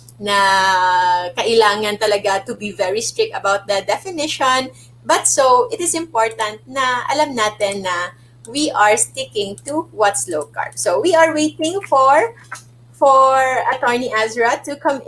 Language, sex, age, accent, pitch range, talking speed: English, female, 20-39, Filipino, 205-270 Hz, 145 wpm